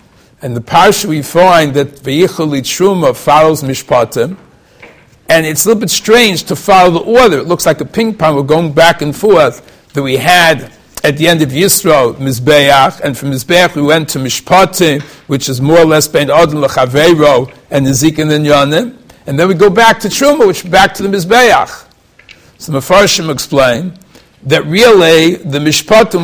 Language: English